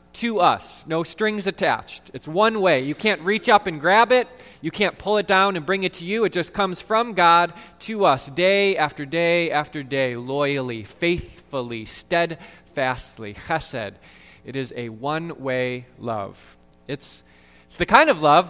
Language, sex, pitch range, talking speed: English, male, 135-185 Hz, 170 wpm